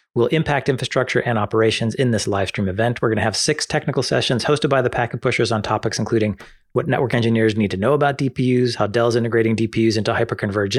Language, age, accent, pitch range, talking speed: English, 30-49, American, 110-135 Hz, 215 wpm